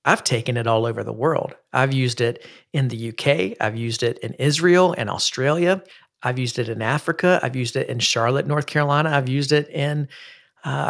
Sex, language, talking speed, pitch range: male, English, 205 wpm, 125-155 Hz